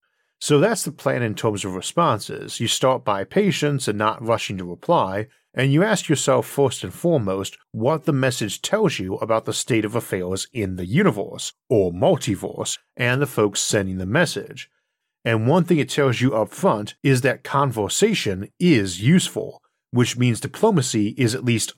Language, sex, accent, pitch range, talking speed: English, male, American, 105-140 Hz, 175 wpm